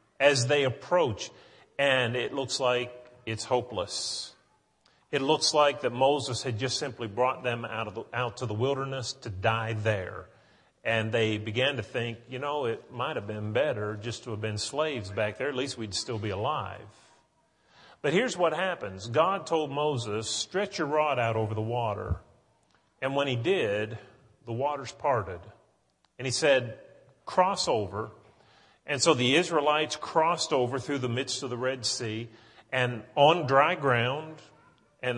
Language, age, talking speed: English, 40-59, 165 wpm